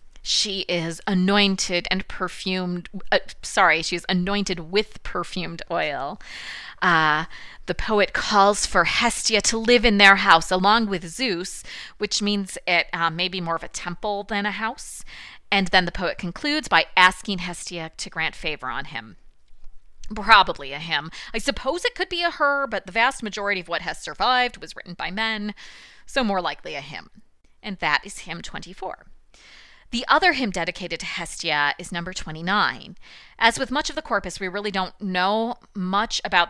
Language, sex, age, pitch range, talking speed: English, female, 30-49, 170-210 Hz, 175 wpm